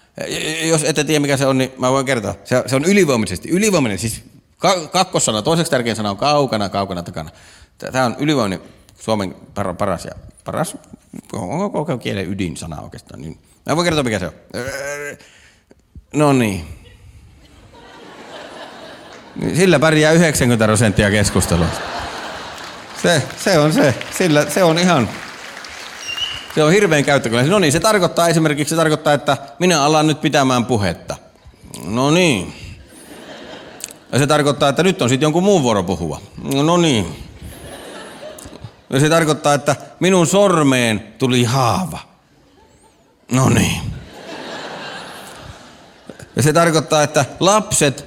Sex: male